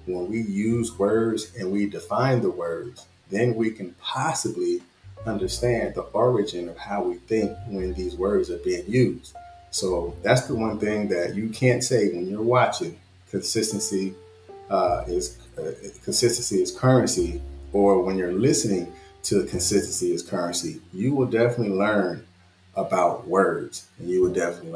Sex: male